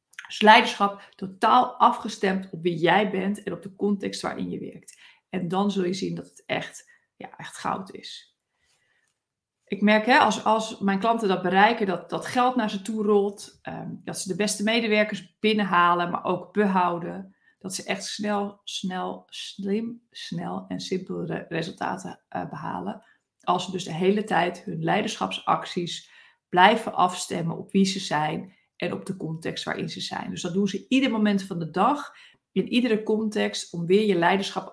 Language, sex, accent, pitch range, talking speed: Dutch, female, Dutch, 180-210 Hz, 170 wpm